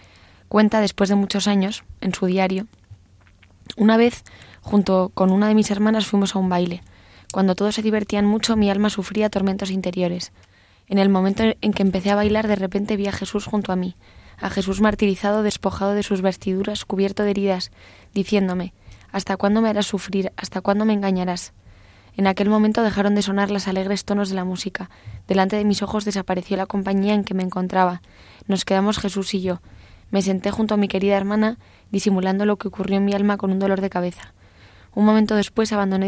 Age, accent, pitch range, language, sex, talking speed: 20-39, Spanish, 185-205 Hz, Spanish, female, 195 wpm